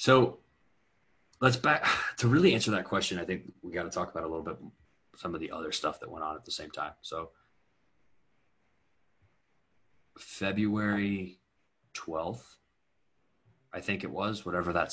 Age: 30-49